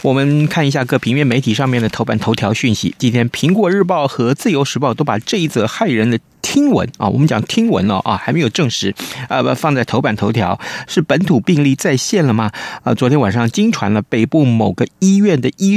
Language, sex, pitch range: Chinese, male, 115-155 Hz